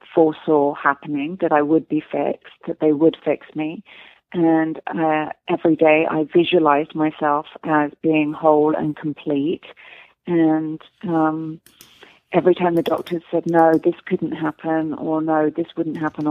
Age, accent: 30-49, British